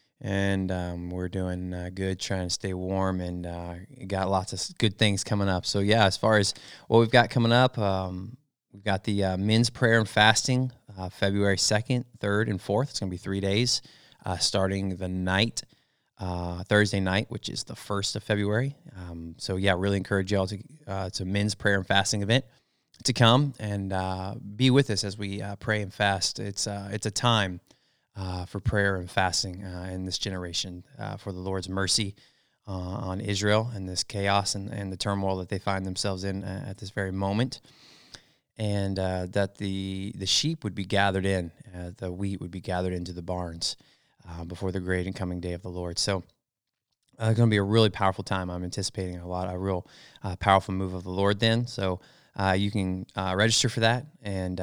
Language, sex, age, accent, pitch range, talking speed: English, male, 20-39, American, 95-110 Hz, 210 wpm